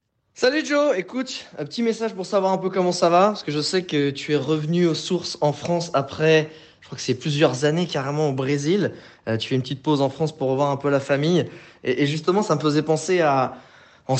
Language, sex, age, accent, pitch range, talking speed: French, male, 20-39, French, 130-155 Hz, 245 wpm